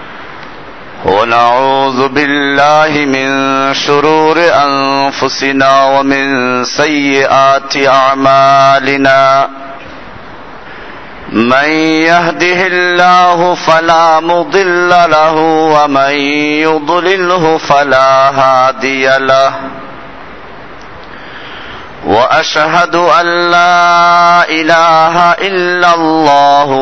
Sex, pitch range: male, 135-165 Hz